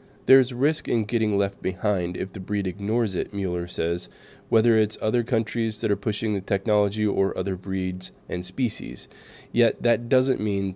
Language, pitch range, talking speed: English, 95-110 Hz, 175 wpm